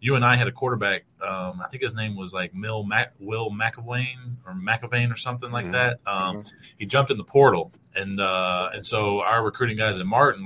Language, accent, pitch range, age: English, American, 100-120 Hz, 20-39